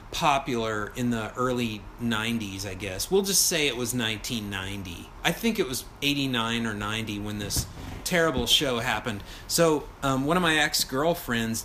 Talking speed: 160 wpm